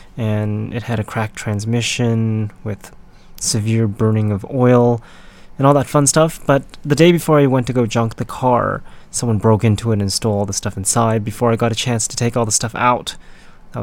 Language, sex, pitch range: English, male, 110-125 Hz